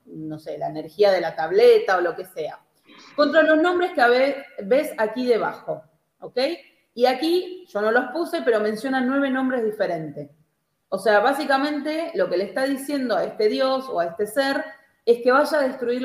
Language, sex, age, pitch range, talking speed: Spanish, female, 30-49, 205-275 Hz, 195 wpm